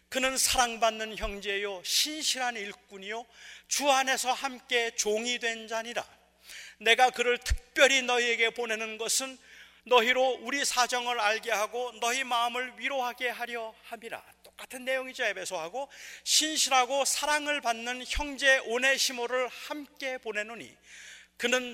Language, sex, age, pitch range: Korean, male, 40-59, 225-265 Hz